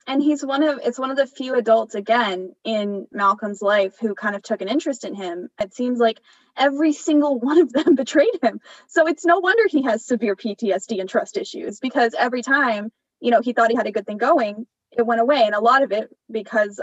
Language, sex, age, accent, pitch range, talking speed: English, female, 10-29, American, 210-280 Hz, 230 wpm